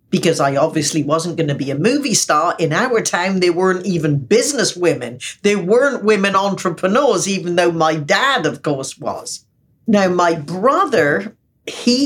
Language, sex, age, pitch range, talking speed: English, female, 60-79, 160-215 Hz, 160 wpm